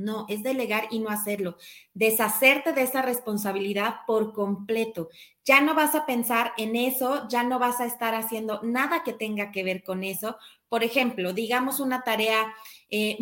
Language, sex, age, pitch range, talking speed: Spanish, female, 30-49, 215-270 Hz, 175 wpm